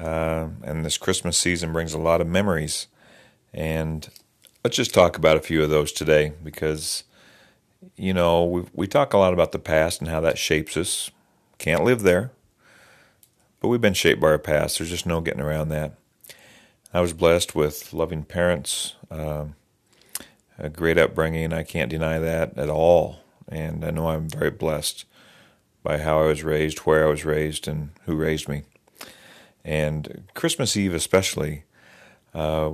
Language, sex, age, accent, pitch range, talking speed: English, male, 40-59, American, 80-90 Hz, 165 wpm